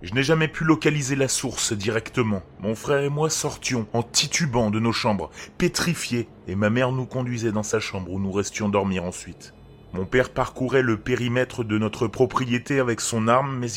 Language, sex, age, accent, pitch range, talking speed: French, male, 30-49, French, 105-130 Hz, 190 wpm